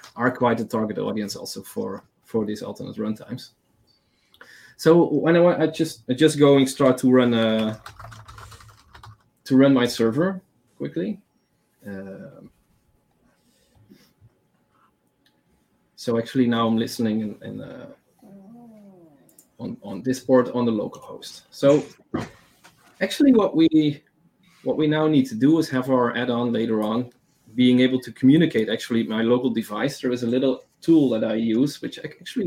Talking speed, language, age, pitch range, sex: 145 wpm, English, 30-49, 110-150 Hz, male